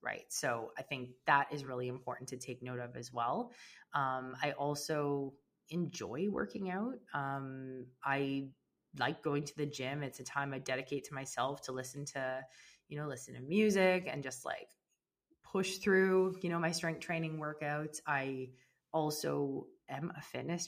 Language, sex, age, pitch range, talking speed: English, female, 20-39, 135-185 Hz, 170 wpm